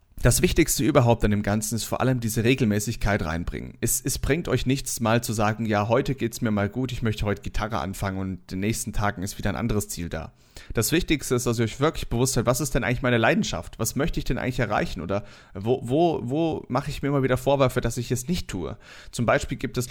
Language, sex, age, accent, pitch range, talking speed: German, male, 30-49, German, 110-135 Hz, 245 wpm